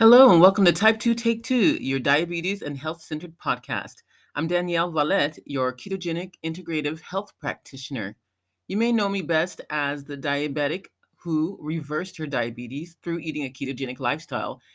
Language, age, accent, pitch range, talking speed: English, 30-49, American, 130-180 Hz, 155 wpm